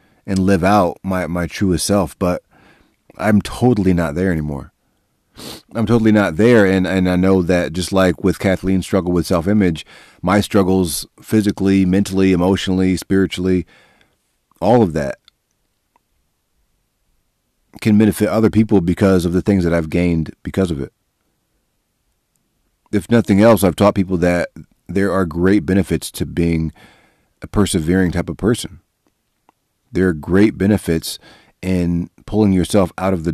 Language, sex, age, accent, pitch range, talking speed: English, male, 30-49, American, 85-100 Hz, 145 wpm